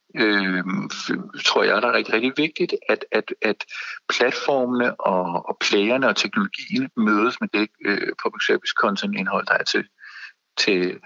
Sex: male